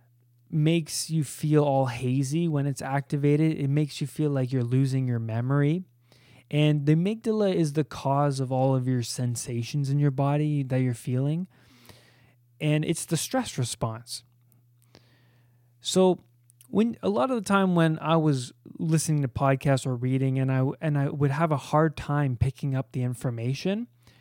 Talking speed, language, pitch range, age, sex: 165 wpm, English, 125-155 Hz, 20-39, male